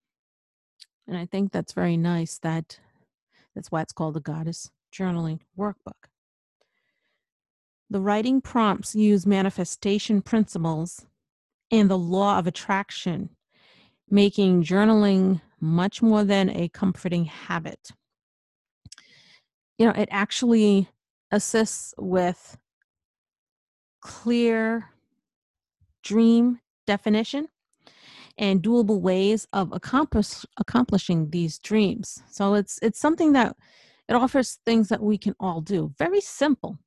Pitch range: 180-225 Hz